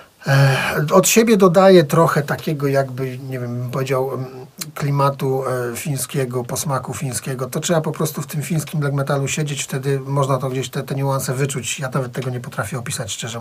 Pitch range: 130-160 Hz